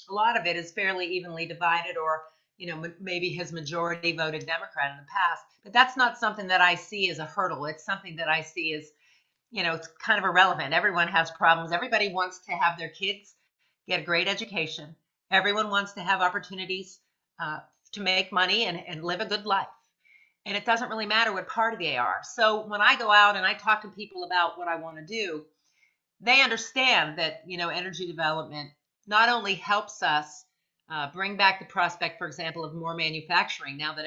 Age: 40-59